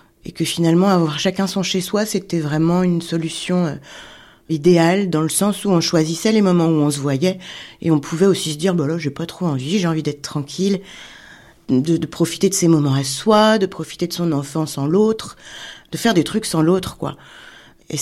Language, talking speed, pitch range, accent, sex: French, 210 wpm, 145-180 Hz, French, female